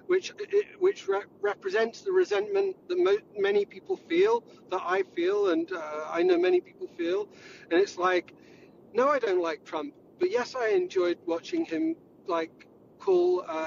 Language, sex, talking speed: English, male, 165 wpm